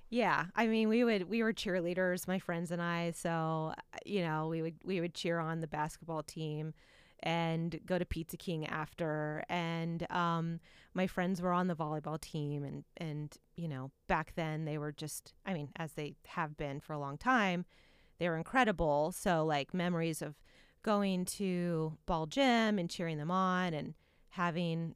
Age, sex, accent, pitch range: 30-49, female, American, 155-190 Hz